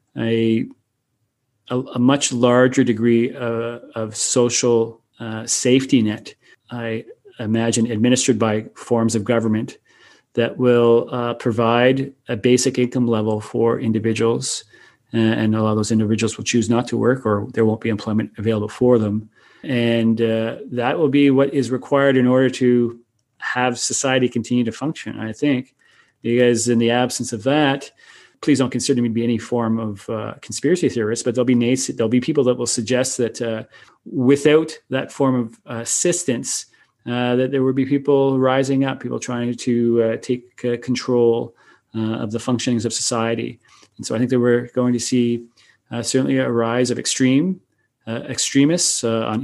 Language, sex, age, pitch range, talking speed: English, male, 40-59, 115-125 Hz, 170 wpm